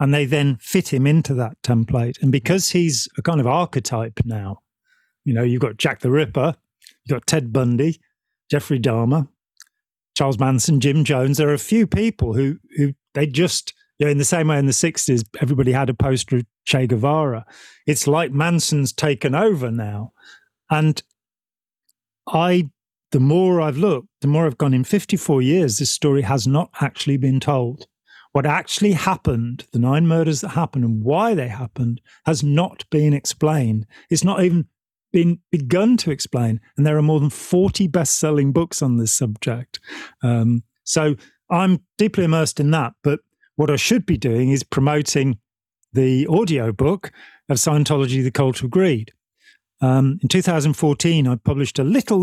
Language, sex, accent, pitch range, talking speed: English, male, British, 125-160 Hz, 170 wpm